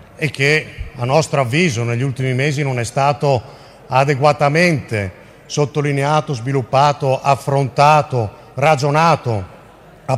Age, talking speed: 50-69, 100 wpm